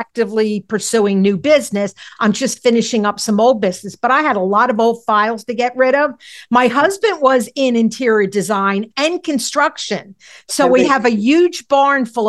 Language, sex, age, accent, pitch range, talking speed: English, female, 50-69, American, 220-270 Hz, 185 wpm